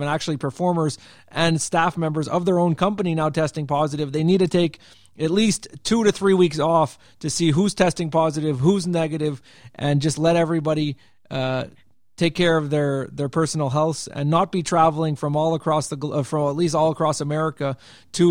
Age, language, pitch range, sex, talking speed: 30-49, English, 140-170 Hz, male, 185 wpm